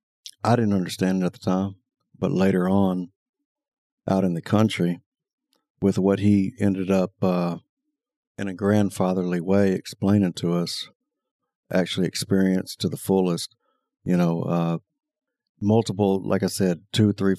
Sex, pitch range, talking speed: male, 90-100 Hz, 140 wpm